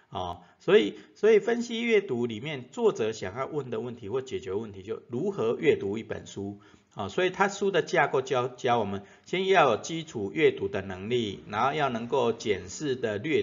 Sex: male